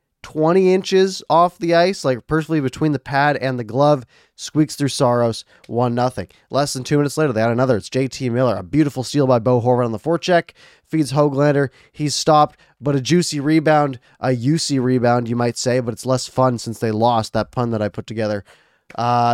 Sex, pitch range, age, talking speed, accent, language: male, 120-160 Hz, 20-39, 205 wpm, American, English